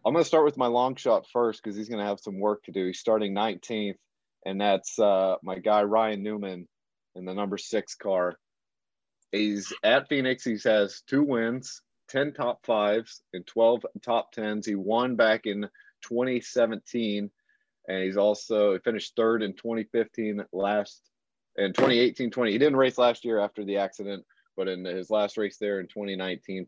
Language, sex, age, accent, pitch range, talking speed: English, male, 30-49, American, 100-120 Hz, 180 wpm